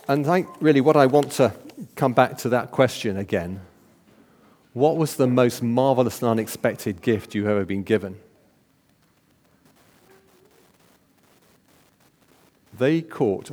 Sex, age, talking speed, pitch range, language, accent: male, 50-69, 120 wpm, 100-135 Hz, English, British